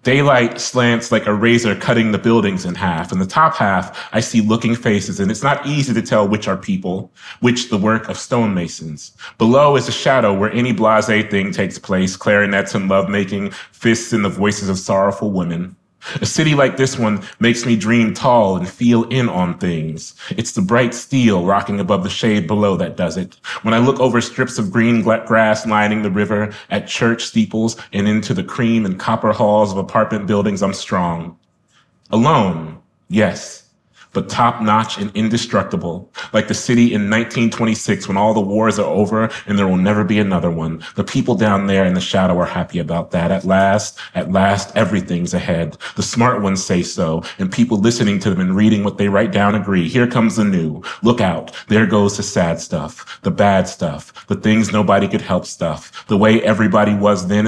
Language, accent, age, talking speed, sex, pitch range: English, American, 30-49, 195 wpm, male, 100-115 Hz